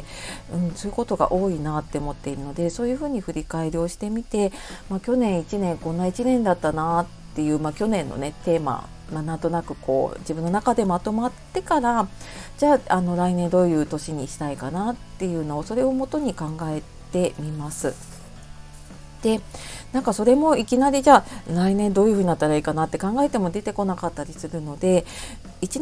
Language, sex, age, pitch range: Japanese, female, 40-59, 150-220 Hz